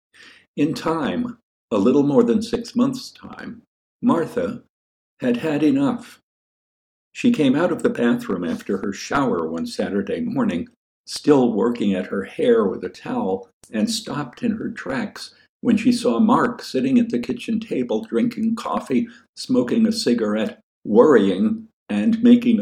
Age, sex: 60-79, male